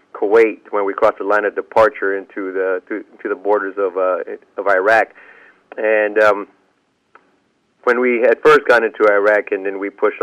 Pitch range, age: 100-125 Hz, 30-49